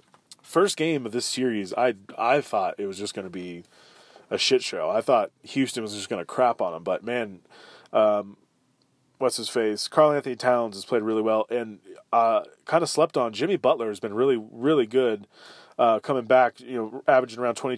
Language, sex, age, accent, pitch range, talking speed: English, male, 20-39, American, 105-125 Hz, 200 wpm